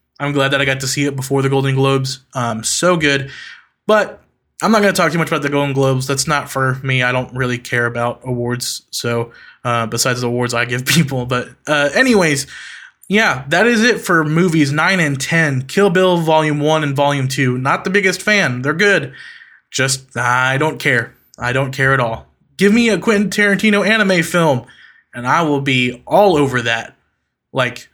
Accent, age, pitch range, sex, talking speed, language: American, 20-39, 135-170 Hz, male, 200 wpm, English